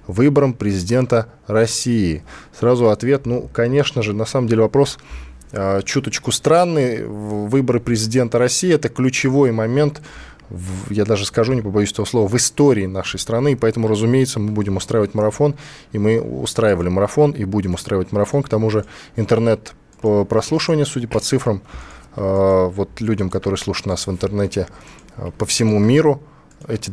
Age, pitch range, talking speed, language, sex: 10-29, 105-130 Hz, 145 wpm, Russian, male